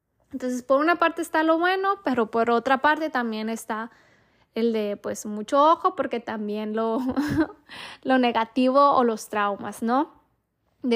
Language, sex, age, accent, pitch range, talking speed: Spanish, female, 10-29, Mexican, 220-260 Hz, 155 wpm